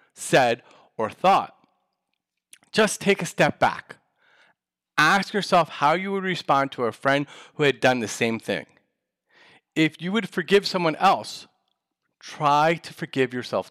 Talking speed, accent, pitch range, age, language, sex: 145 wpm, American, 130-180 Hz, 40-59, English, male